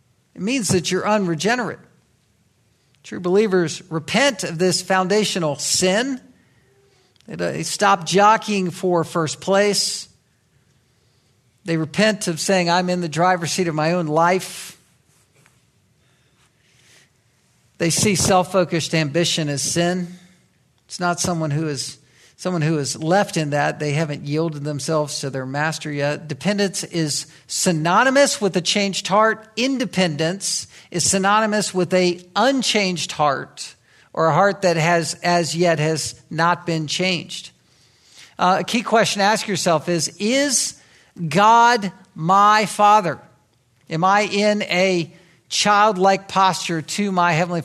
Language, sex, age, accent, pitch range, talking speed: English, male, 50-69, American, 155-195 Hz, 130 wpm